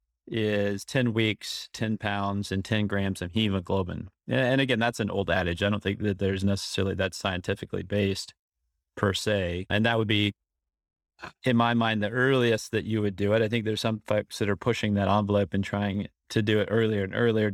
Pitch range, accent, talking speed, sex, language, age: 100-115 Hz, American, 200 wpm, male, English, 30-49